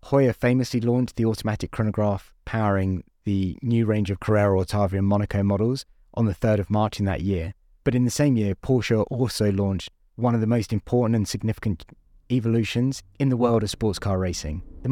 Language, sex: English, male